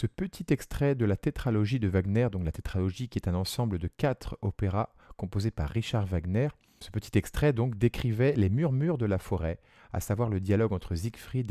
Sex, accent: male, French